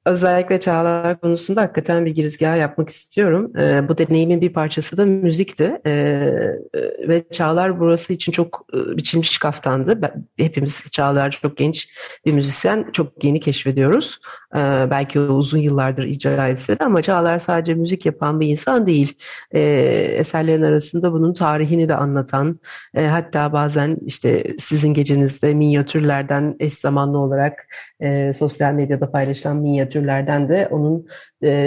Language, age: Turkish, 40-59